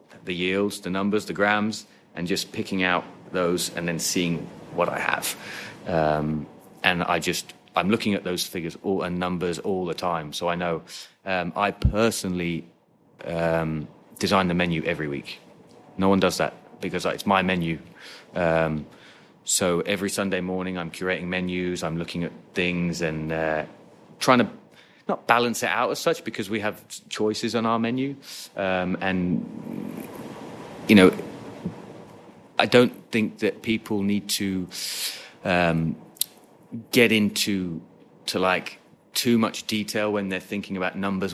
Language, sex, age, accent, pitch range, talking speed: English, male, 30-49, British, 85-100 Hz, 150 wpm